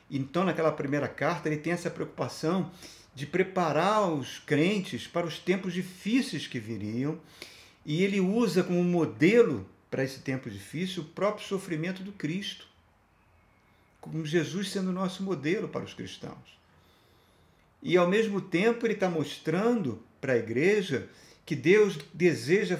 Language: Portuguese